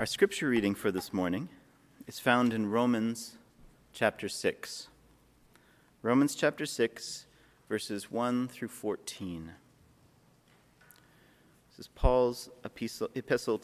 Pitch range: 105-130 Hz